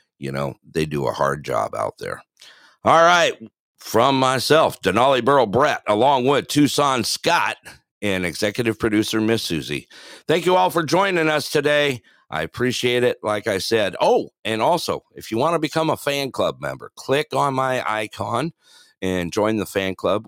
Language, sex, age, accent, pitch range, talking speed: English, male, 50-69, American, 85-130 Hz, 175 wpm